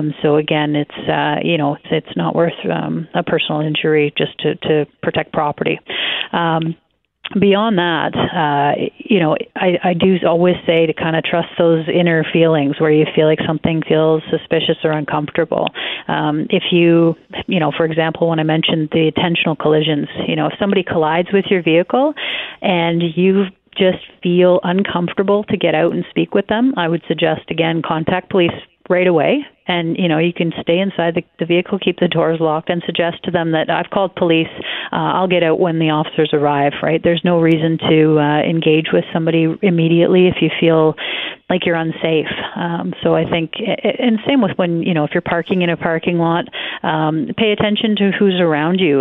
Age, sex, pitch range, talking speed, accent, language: 40-59, female, 160-180 Hz, 190 wpm, American, English